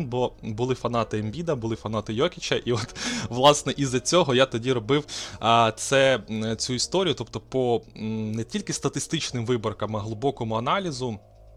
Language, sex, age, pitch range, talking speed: Ukrainian, male, 20-39, 110-130 Hz, 150 wpm